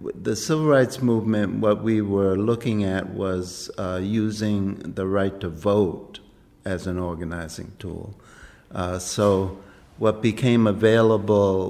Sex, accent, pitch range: male, American, 90-110 Hz